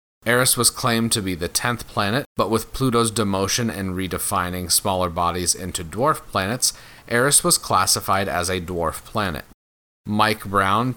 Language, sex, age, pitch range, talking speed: English, male, 30-49, 90-120 Hz, 155 wpm